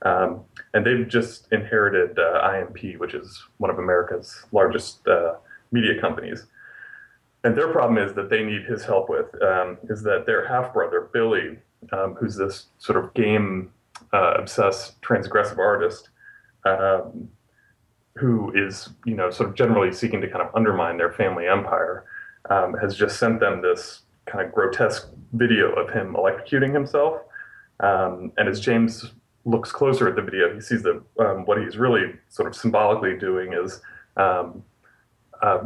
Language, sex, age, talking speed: English, male, 30-49, 160 wpm